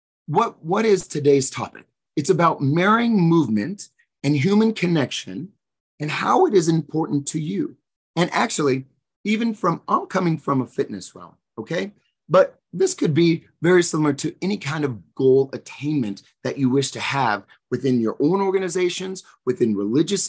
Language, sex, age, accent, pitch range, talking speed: English, male, 30-49, American, 125-185 Hz, 155 wpm